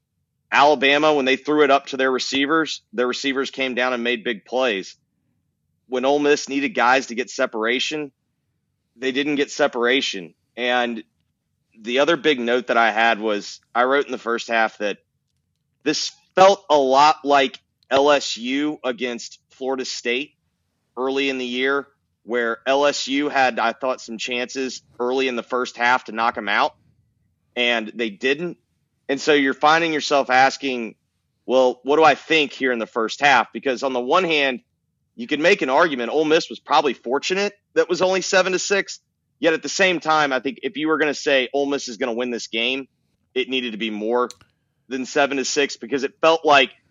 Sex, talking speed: male, 190 wpm